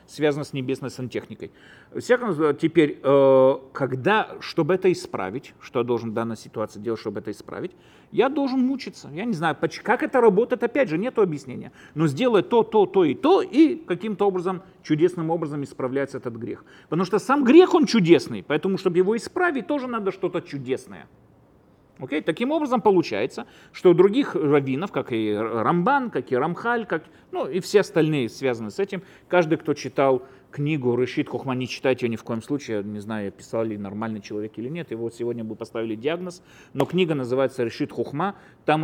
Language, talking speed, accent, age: Russian, 180 wpm, native, 40-59